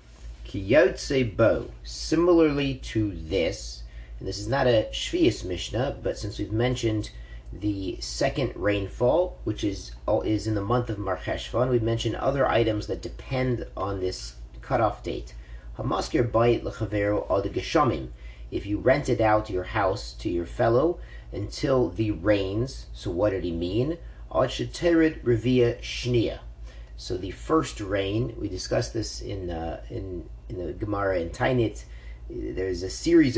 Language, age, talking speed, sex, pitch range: English, 40-59, 130 wpm, male, 90-120 Hz